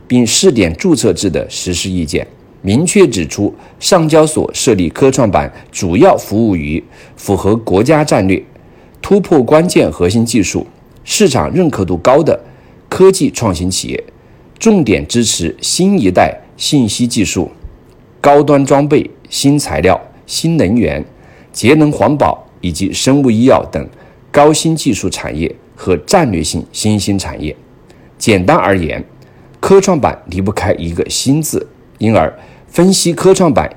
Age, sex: 50-69, male